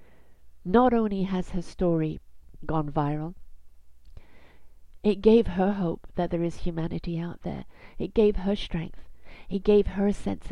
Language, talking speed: English, 150 wpm